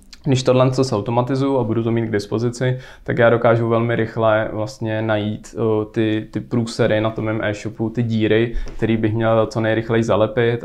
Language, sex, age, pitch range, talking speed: Slovak, male, 20-39, 105-115 Hz, 185 wpm